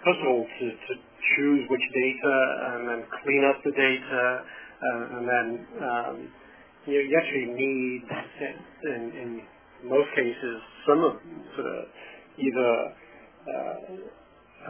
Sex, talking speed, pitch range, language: male, 130 wpm, 120-135 Hz, English